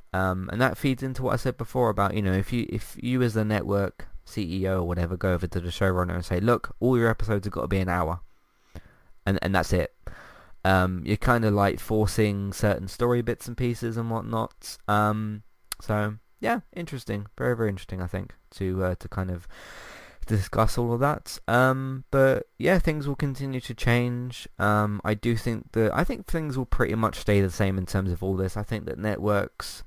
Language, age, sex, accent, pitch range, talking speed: English, 20-39, male, British, 95-115 Hz, 210 wpm